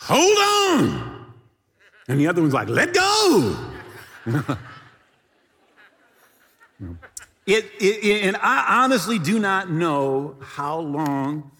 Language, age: English, 50-69